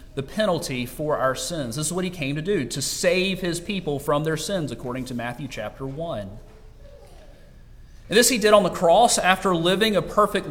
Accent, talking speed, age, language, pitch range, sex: American, 200 wpm, 40-59, English, 135-190 Hz, male